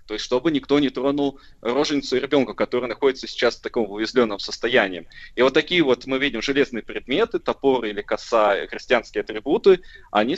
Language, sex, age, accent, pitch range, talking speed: Russian, male, 20-39, native, 115-155 Hz, 175 wpm